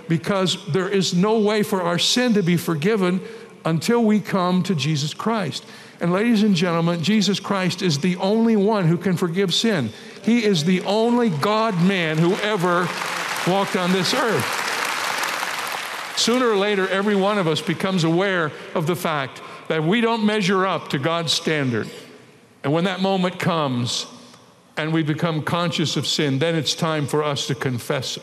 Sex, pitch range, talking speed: male, 165-210 Hz, 170 wpm